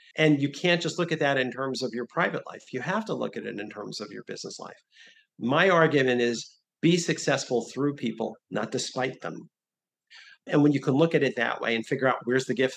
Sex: male